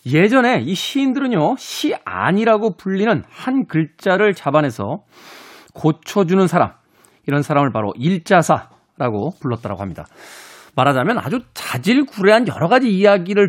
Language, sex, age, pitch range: Korean, male, 40-59, 155-250 Hz